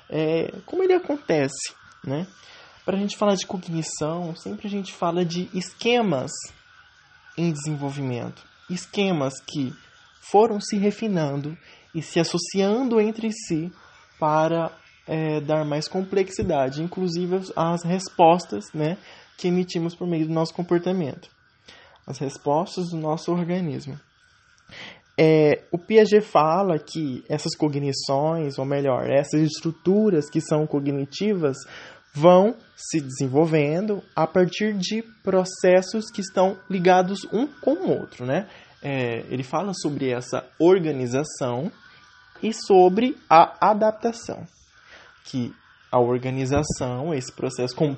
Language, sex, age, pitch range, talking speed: English, male, 20-39, 145-190 Hz, 120 wpm